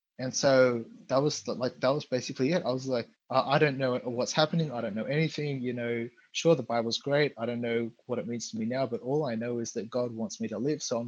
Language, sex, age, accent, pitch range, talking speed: English, male, 20-39, Australian, 115-135 Hz, 265 wpm